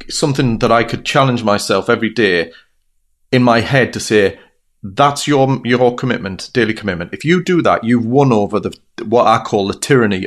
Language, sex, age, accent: English, male, 30-49, British